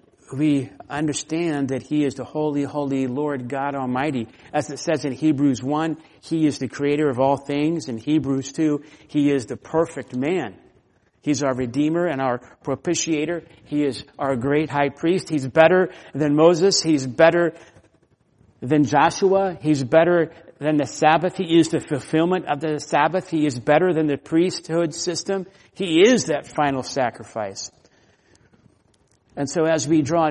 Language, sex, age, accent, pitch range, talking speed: English, male, 50-69, American, 135-165 Hz, 160 wpm